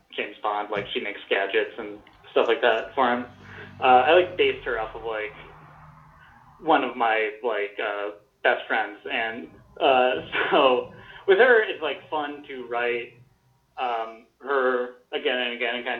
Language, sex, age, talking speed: English, male, 30-49, 165 wpm